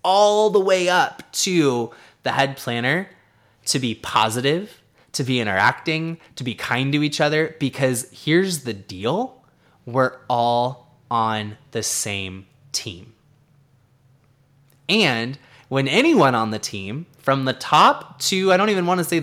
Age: 20-39